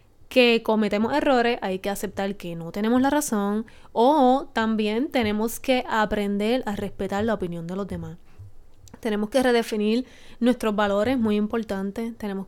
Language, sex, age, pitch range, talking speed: Spanish, female, 20-39, 195-230 Hz, 150 wpm